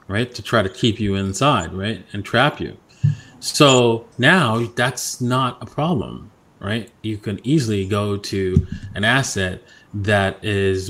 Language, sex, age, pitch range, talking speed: English, male, 30-49, 100-125 Hz, 150 wpm